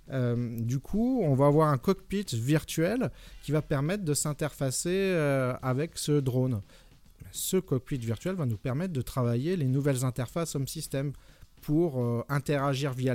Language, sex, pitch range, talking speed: French, male, 125-165 Hz, 160 wpm